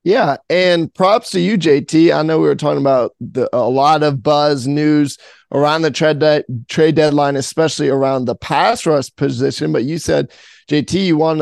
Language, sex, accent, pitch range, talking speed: English, male, American, 140-170 Hz, 180 wpm